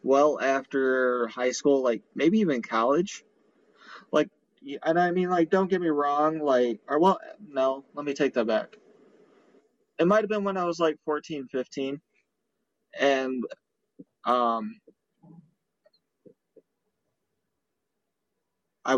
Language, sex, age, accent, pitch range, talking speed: English, male, 30-49, American, 125-160 Hz, 120 wpm